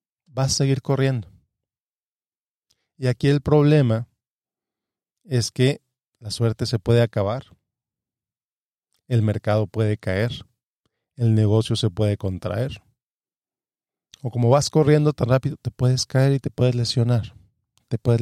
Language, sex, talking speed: Spanish, male, 130 wpm